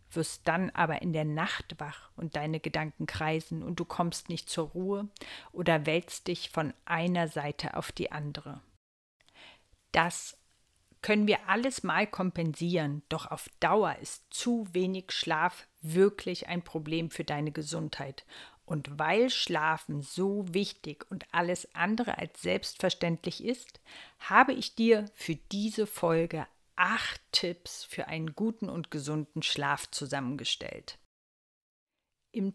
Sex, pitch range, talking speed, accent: female, 155-200 Hz, 135 wpm, German